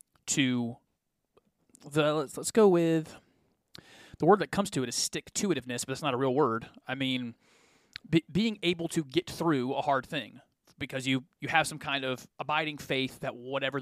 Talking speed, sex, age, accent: 180 wpm, male, 30-49, American